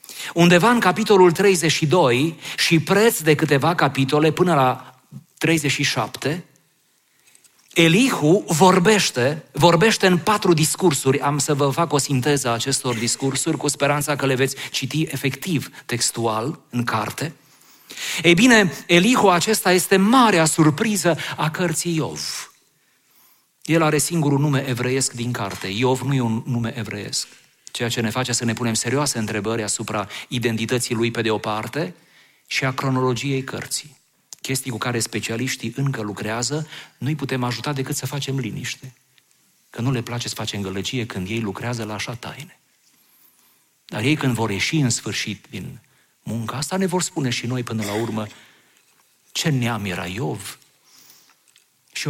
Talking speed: 150 wpm